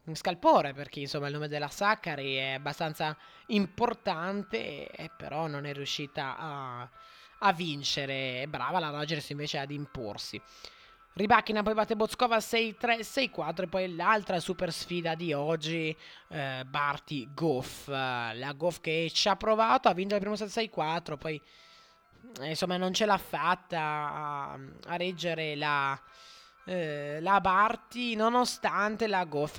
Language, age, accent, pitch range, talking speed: Italian, 20-39, native, 150-215 Hz, 140 wpm